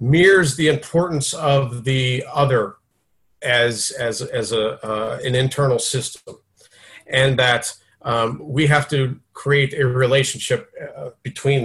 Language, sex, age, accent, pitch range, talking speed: English, male, 40-59, American, 120-155 Hz, 130 wpm